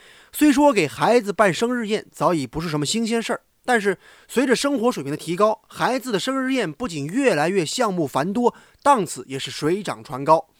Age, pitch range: 20-39, 150-230 Hz